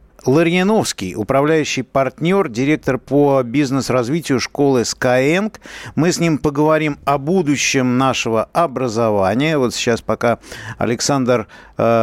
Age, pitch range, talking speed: 50-69, 115-155 Hz, 105 wpm